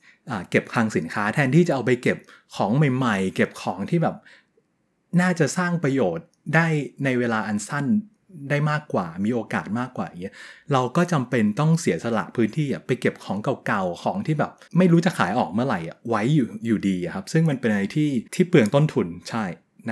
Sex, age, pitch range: male, 20-39, 110-170 Hz